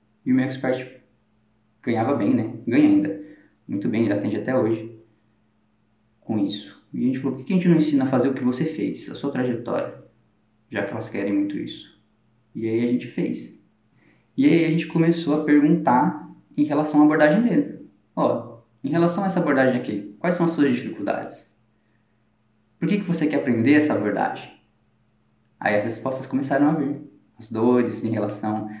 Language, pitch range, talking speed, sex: Portuguese, 110-150 Hz, 190 wpm, male